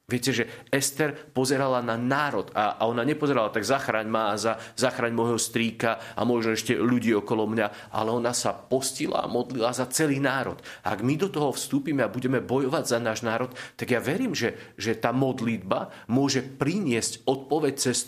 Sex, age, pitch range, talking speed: male, 40-59, 110-140 Hz, 180 wpm